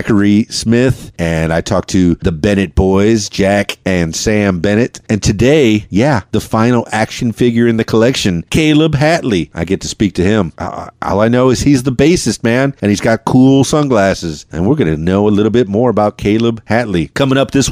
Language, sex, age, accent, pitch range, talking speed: English, male, 40-59, American, 95-125 Hz, 200 wpm